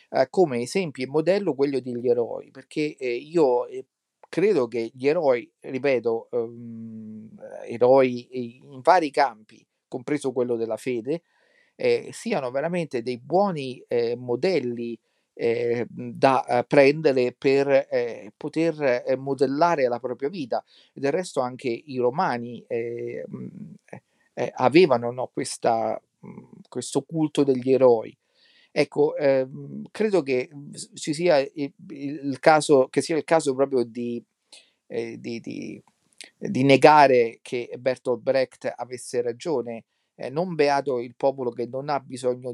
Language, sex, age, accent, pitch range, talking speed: Italian, male, 50-69, native, 125-165 Hz, 110 wpm